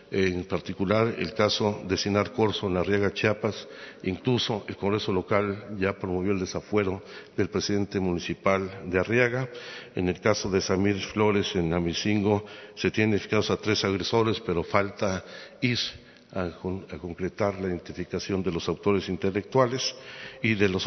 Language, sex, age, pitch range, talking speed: Spanish, male, 60-79, 95-105 Hz, 150 wpm